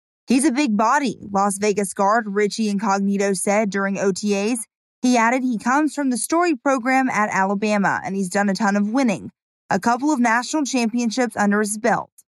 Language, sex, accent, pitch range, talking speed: English, female, American, 200-250 Hz, 180 wpm